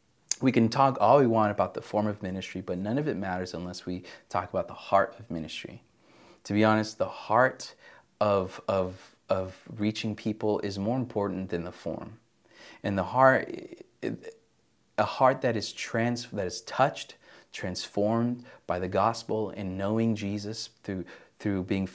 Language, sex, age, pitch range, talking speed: English, male, 30-49, 95-115 Hz, 165 wpm